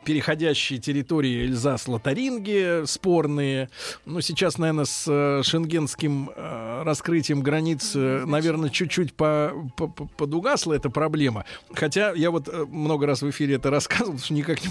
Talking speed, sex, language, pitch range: 115 wpm, male, Russian, 130-170 Hz